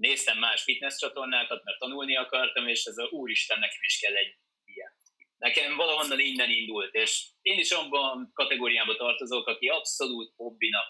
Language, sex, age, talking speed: Hungarian, male, 20-39, 160 wpm